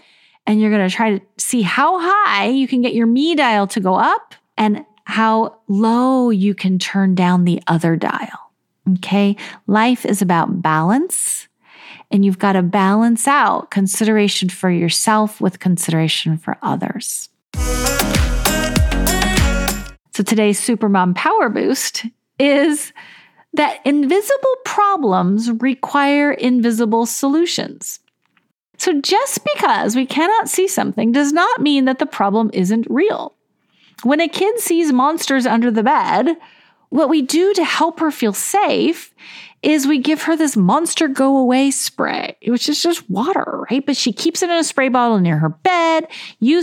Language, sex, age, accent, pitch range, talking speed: English, female, 40-59, American, 210-300 Hz, 145 wpm